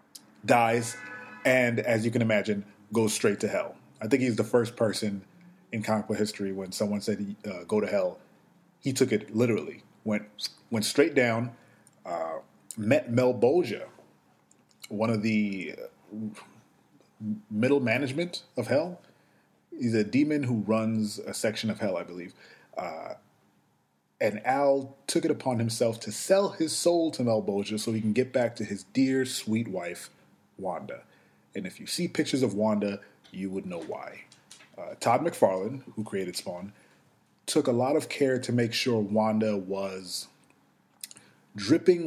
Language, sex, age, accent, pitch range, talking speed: English, male, 30-49, American, 105-140 Hz, 155 wpm